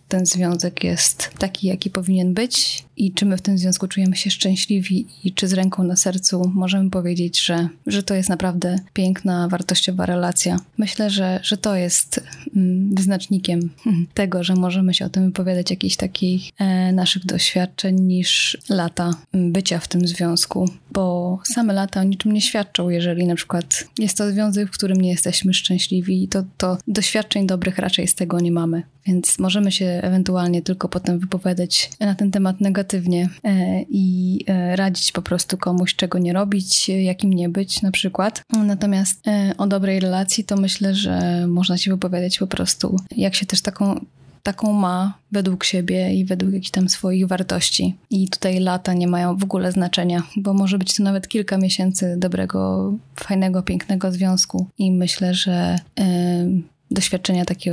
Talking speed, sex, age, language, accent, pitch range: 160 wpm, female, 20-39, Polish, native, 180-195 Hz